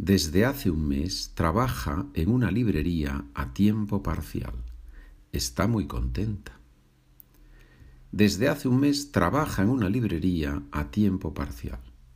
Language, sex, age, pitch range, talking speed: Spanish, male, 50-69, 70-95 Hz, 125 wpm